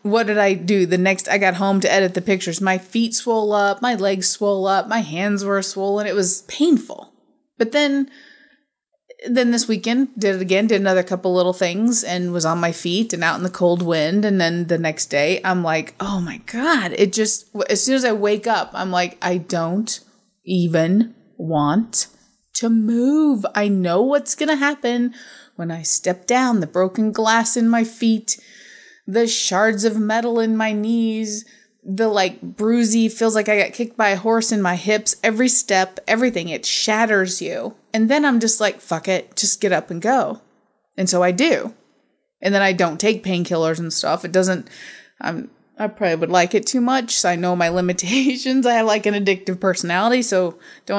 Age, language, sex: 20-39, English, female